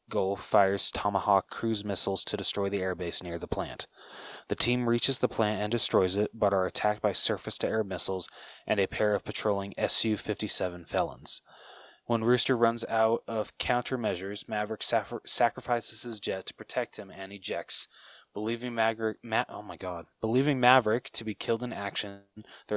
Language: English